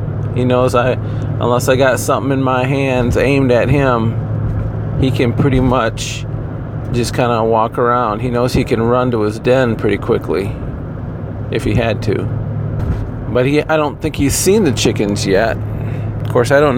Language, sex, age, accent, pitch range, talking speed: English, male, 40-59, American, 115-135 Hz, 175 wpm